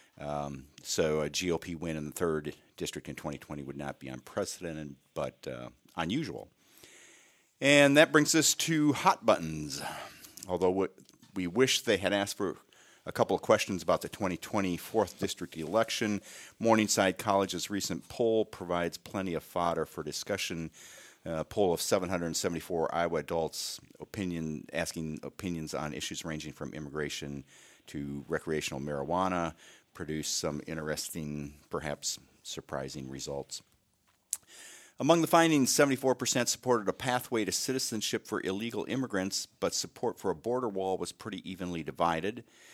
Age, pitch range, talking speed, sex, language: 50-69, 80-110 Hz, 135 wpm, male, English